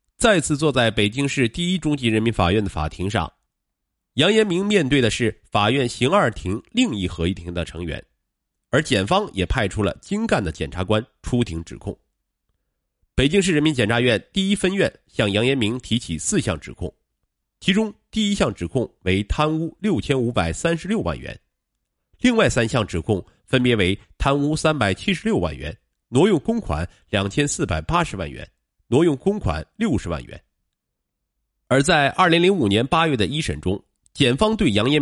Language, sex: Chinese, male